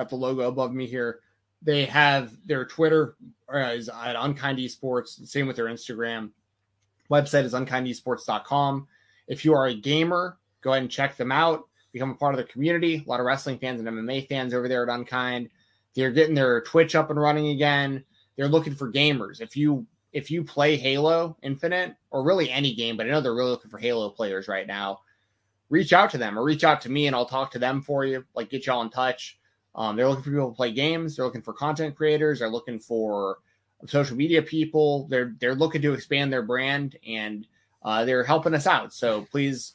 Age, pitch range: 20-39, 115-145 Hz